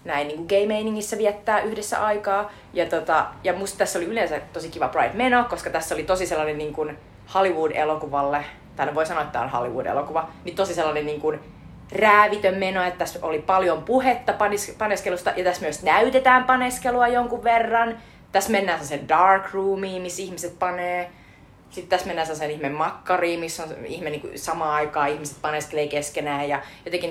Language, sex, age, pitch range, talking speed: Finnish, female, 30-49, 145-190 Hz, 160 wpm